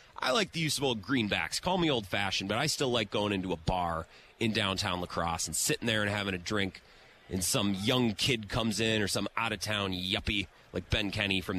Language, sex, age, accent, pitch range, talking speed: English, male, 30-49, American, 95-140 Hz, 215 wpm